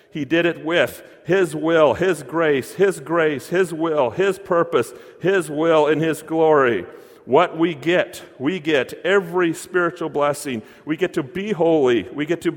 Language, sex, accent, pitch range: English, male, American, 140-185 Hz